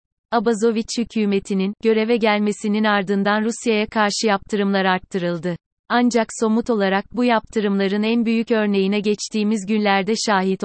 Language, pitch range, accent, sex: Turkish, 195-220 Hz, native, female